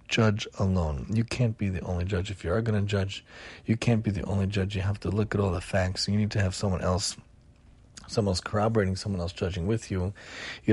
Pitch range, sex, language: 95-115 Hz, male, English